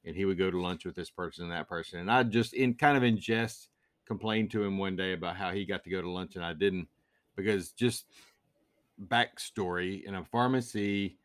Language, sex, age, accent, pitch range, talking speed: English, male, 40-59, American, 95-120 Hz, 225 wpm